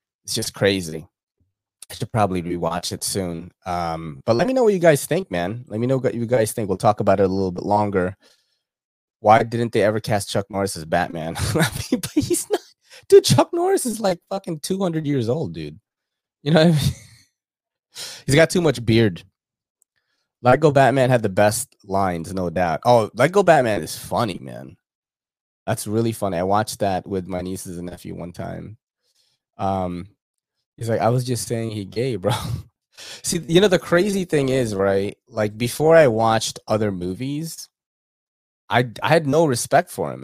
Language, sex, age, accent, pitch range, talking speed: English, male, 20-39, American, 95-130 Hz, 180 wpm